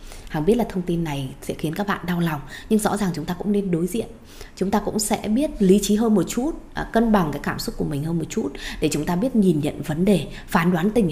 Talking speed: 280 wpm